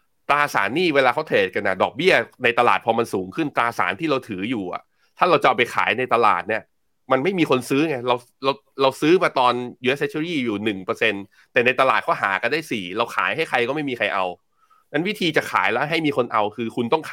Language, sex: Thai, male